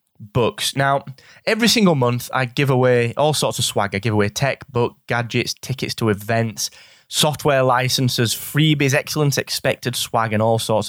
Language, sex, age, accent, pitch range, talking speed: English, male, 20-39, British, 110-140 Hz, 165 wpm